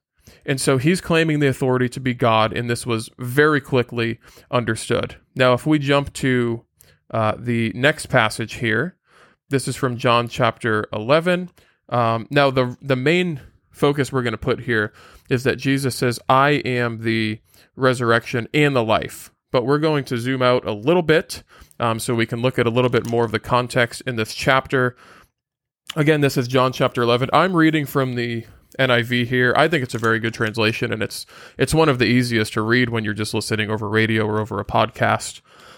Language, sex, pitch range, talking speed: English, male, 115-140 Hz, 195 wpm